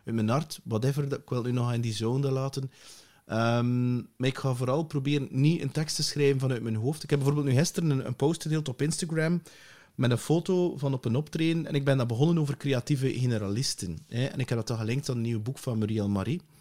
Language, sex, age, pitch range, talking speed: English, male, 30-49, 125-150 Hz, 240 wpm